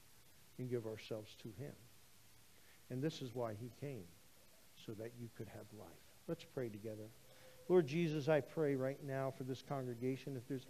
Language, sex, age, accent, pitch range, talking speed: English, male, 50-69, American, 120-150 Hz, 175 wpm